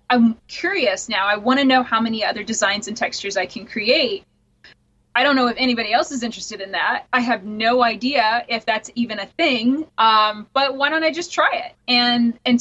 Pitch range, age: 220-270 Hz, 20-39